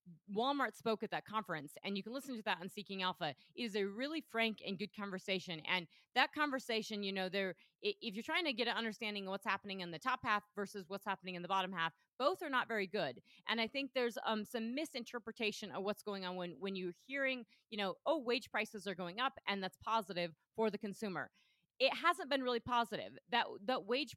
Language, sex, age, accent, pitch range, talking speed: English, female, 30-49, American, 185-230 Hz, 225 wpm